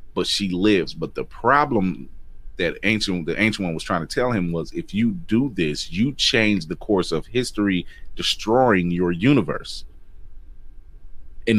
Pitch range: 80-110 Hz